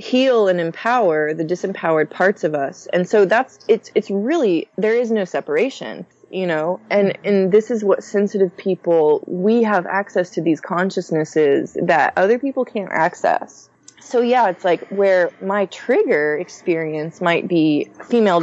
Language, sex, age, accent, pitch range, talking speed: English, female, 20-39, American, 170-210 Hz, 160 wpm